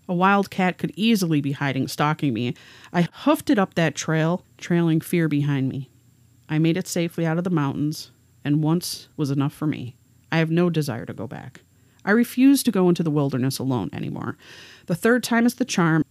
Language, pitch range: English, 140-175 Hz